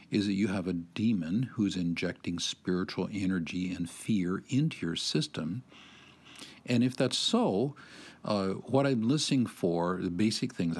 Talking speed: 150 wpm